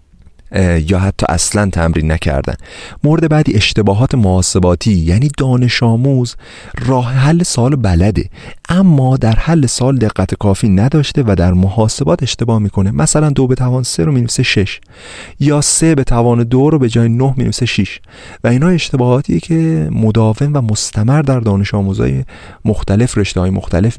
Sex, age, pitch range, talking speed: male, 40-59, 95-130 Hz, 150 wpm